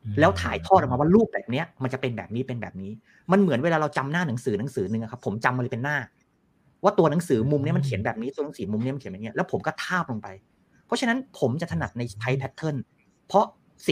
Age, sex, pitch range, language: 30-49, male, 120-175 Hz, Thai